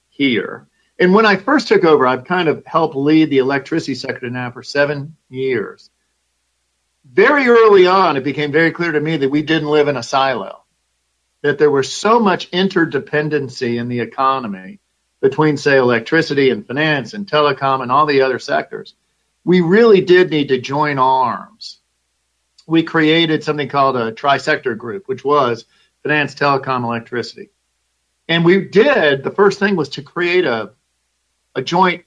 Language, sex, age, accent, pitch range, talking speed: English, male, 50-69, American, 125-165 Hz, 165 wpm